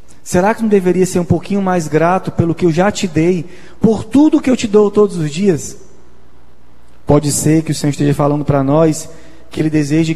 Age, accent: 20-39, Brazilian